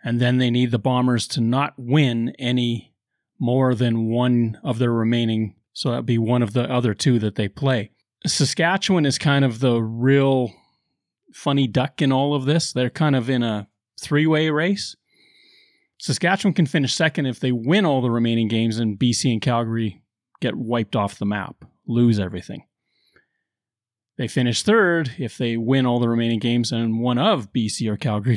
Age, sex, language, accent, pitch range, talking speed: 30-49, male, English, American, 115-145 Hz, 180 wpm